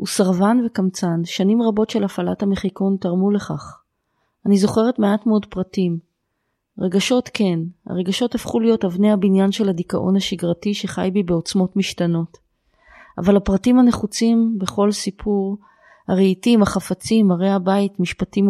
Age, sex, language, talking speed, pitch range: 30-49, female, Hebrew, 125 wpm, 180-210 Hz